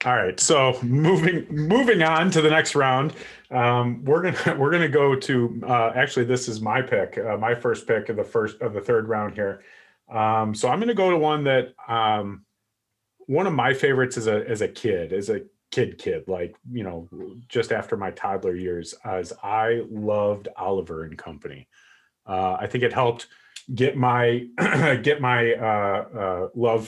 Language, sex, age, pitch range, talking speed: English, male, 30-49, 105-145 Hz, 190 wpm